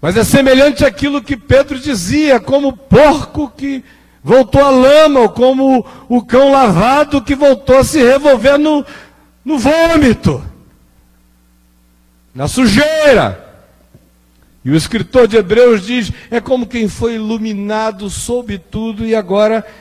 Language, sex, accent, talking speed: Portuguese, male, Brazilian, 135 wpm